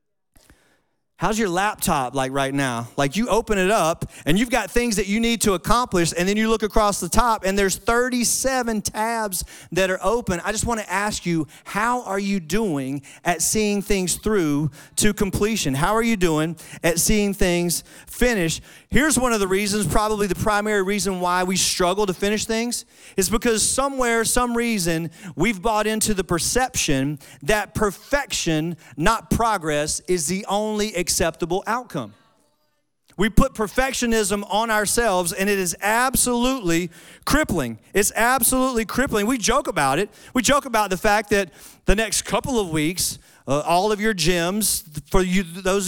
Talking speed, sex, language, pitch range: 165 wpm, male, English, 175-220 Hz